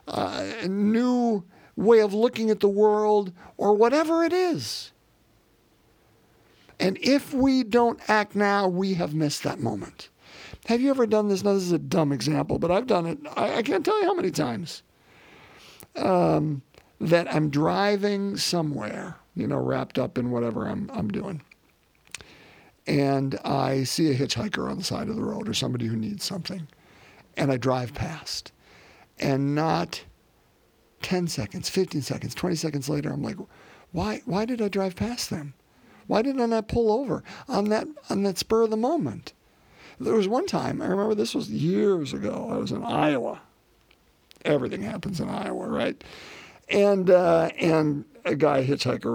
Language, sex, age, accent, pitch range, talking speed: English, male, 50-69, American, 145-225 Hz, 170 wpm